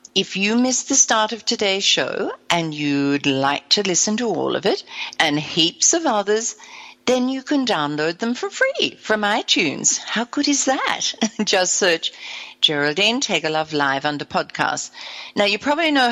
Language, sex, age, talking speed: English, female, 60-79, 170 wpm